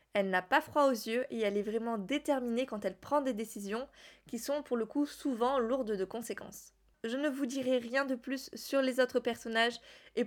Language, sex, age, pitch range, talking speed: French, female, 20-39, 220-285 Hz, 215 wpm